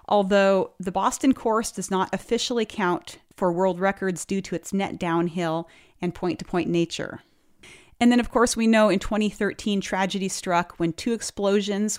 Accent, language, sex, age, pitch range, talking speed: American, English, female, 40-59, 175-215 Hz, 160 wpm